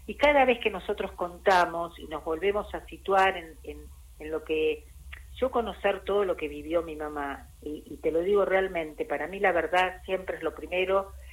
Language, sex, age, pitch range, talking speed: Spanish, female, 50-69, 155-190 Hz, 200 wpm